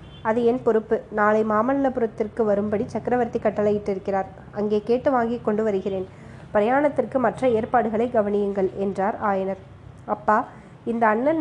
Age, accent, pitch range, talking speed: 20-39, native, 210-245 Hz, 115 wpm